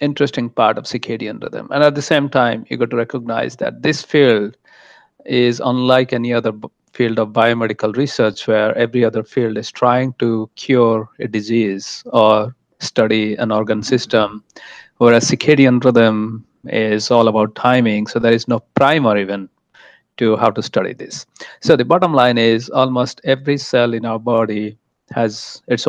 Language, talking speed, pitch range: English, 165 wpm, 110-125 Hz